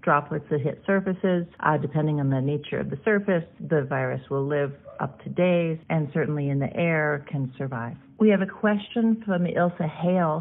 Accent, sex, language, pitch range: American, female, English, 140-175 Hz